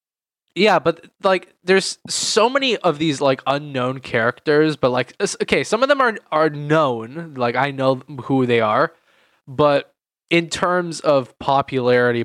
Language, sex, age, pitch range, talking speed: English, male, 10-29, 120-175 Hz, 150 wpm